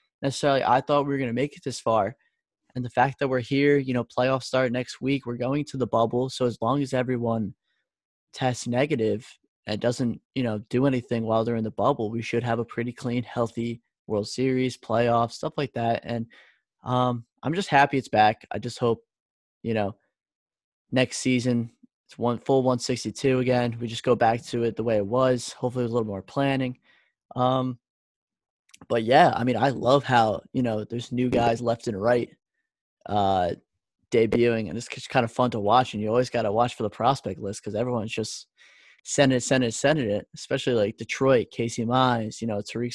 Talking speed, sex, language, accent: 205 wpm, male, English, American